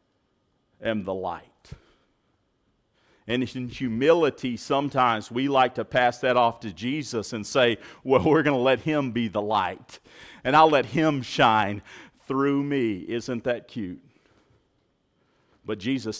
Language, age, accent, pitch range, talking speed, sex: English, 40-59, American, 100-130 Hz, 140 wpm, male